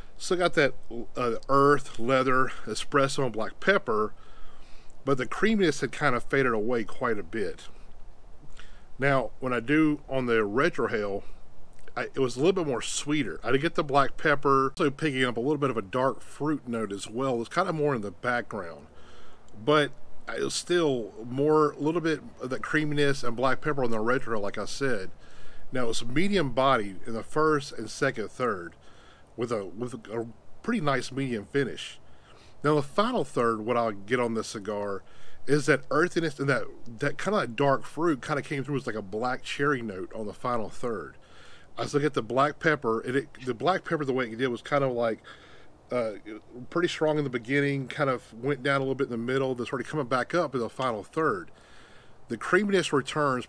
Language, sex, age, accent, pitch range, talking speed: English, male, 40-59, American, 115-145 Hz, 210 wpm